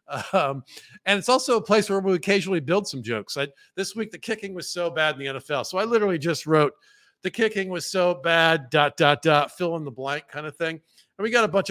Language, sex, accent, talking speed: English, male, American, 245 wpm